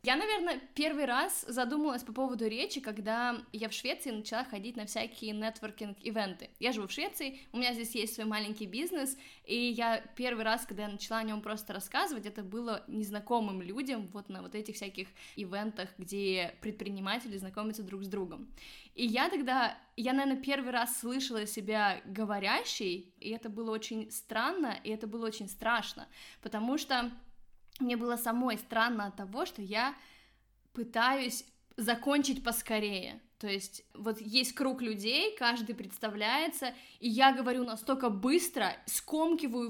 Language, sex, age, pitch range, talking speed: Russian, female, 20-39, 215-260 Hz, 155 wpm